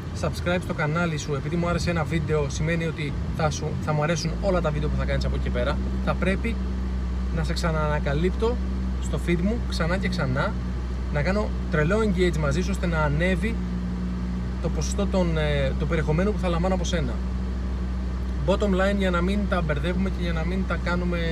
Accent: native